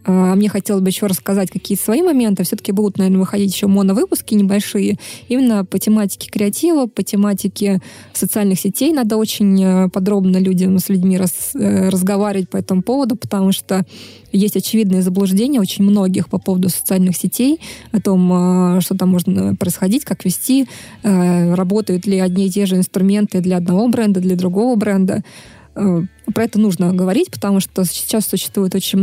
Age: 20-39